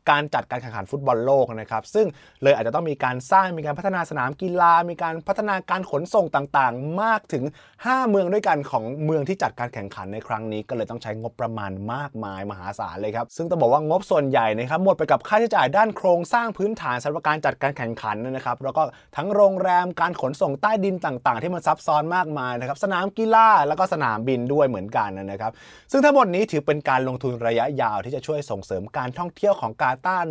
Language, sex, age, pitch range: Thai, male, 20-39, 120-175 Hz